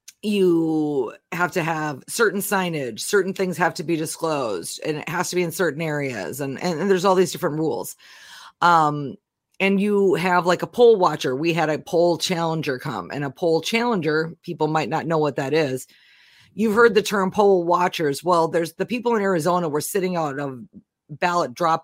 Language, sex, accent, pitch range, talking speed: English, female, American, 155-190 Hz, 195 wpm